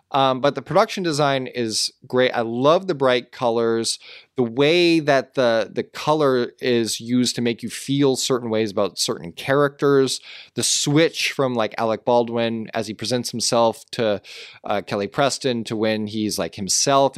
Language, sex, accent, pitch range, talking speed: English, male, American, 115-145 Hz, 170 wpm